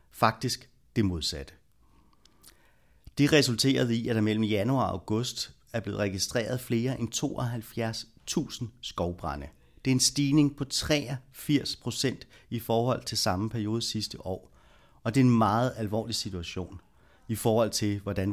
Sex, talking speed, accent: male, 140 wpm, native